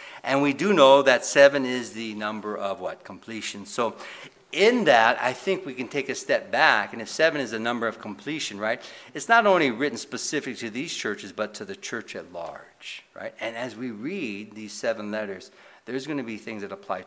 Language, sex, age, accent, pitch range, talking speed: English, male, 60-79, American, 110-175 Hz, 215 wpm